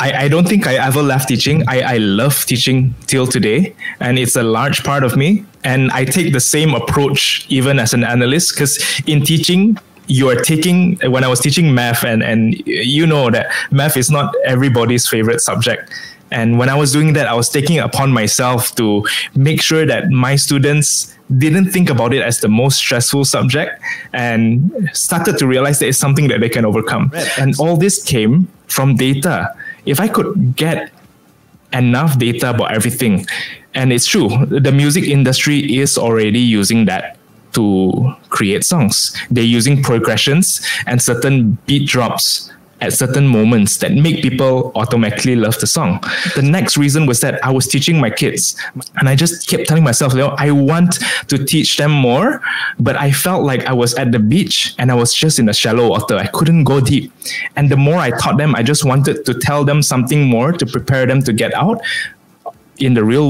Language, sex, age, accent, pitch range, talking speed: English, male, 20-39, Malaysian, 120-150 Hz, 190 wpm